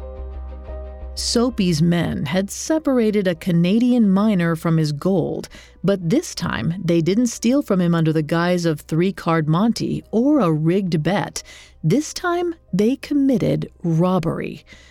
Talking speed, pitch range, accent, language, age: 135 wpm, 165-225 Hz, American, English, 40-59